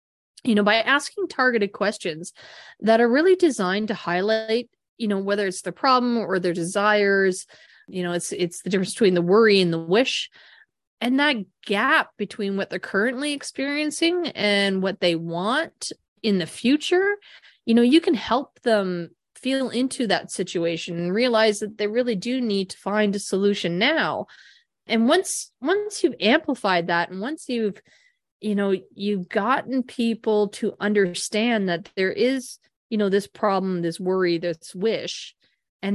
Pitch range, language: 185-235 Hz, English